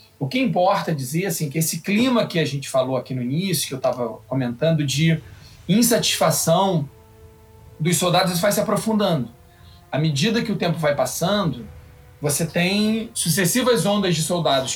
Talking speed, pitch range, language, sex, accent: 165 wpm, 140-185 Hz, Portuguese, male, Brazilian